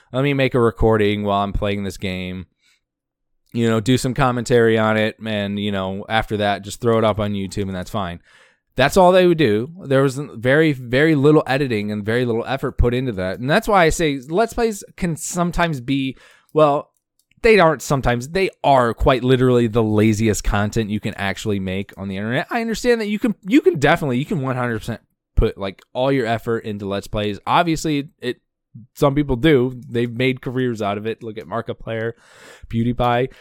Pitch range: 100-135 Hz